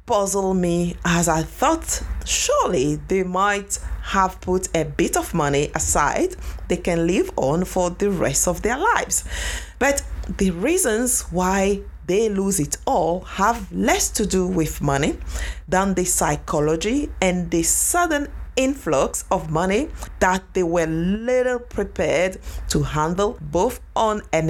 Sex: female